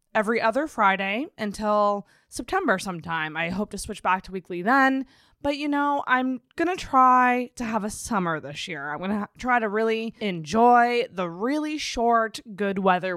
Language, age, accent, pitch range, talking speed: English, 20-39, American, 195-250 Hz, 170 wpm